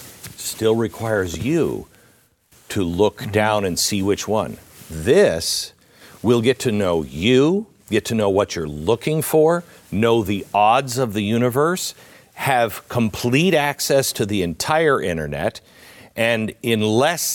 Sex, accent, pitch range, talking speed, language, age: male, American, 105-145 Hz, 135 wpm, English, 50-69